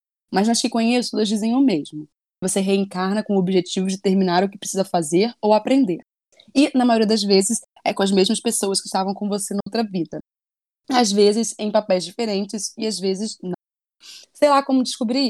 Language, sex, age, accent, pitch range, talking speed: Portuguese, female, 20-39, Brazilian, 190-220 Hz, 195 wpm